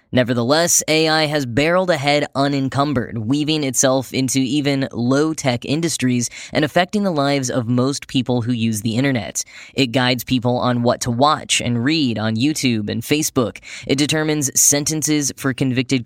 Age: 10-29